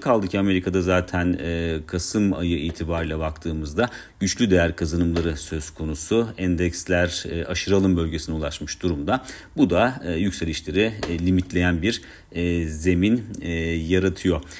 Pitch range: 85-95 Hz